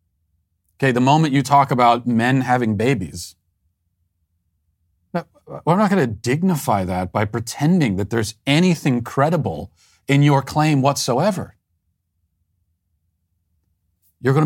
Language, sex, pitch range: English, male, 85-140 Hz